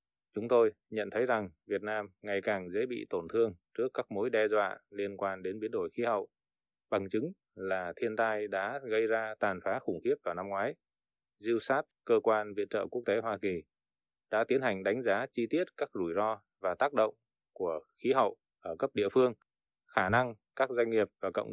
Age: 20-39